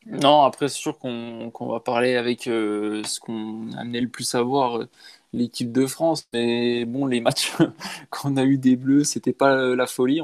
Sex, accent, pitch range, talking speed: male, French, 120-135 Hz, 200 wpm